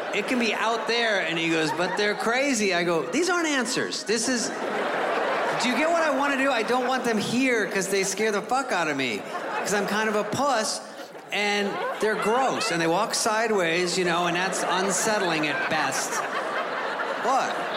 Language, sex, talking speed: English, male, 205 wpm